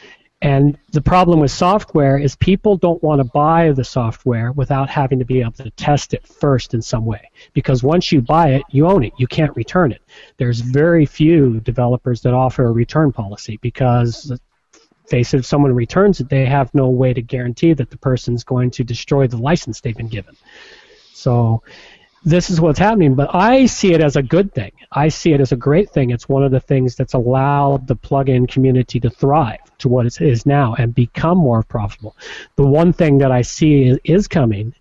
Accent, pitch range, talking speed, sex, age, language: American, 120-145 Hz, 205 wpm, male, 40-59, English